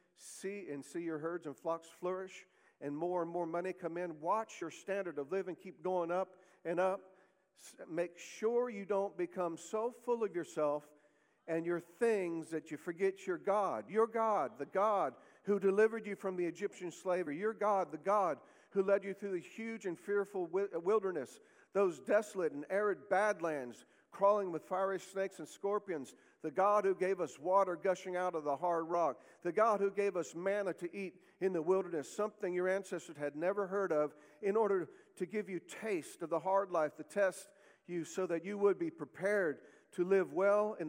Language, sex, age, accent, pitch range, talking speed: English, male, 50-69, American, 165-200 Hz, 190 wpm